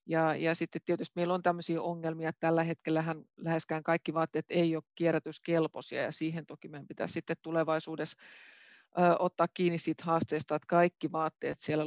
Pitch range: 155-170 Hz